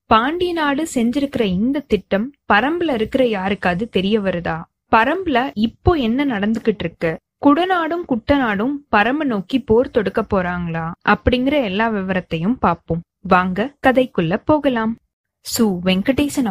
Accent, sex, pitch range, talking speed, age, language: native, female, 185-270 Hz, 90 wpm, 20-39, Tamil